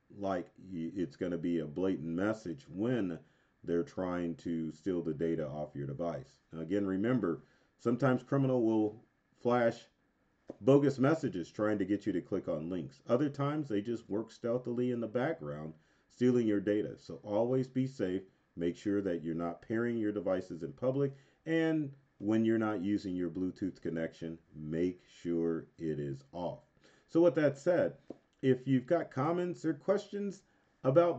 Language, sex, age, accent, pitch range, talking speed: English, male, 40-59, American, 85-130 Hz, 160 wpm